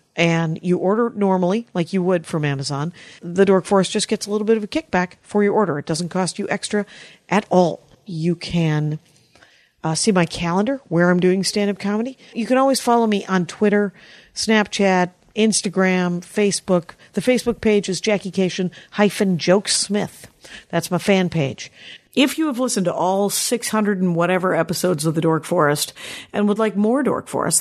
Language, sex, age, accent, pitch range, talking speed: English, female, 50-69, American, 170-215 Hz, 175 wpm